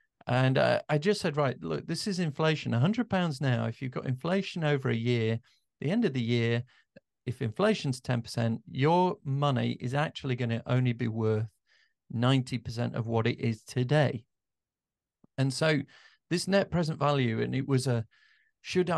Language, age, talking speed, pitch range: English, 40-59, 170 wpm, 120-155 Hz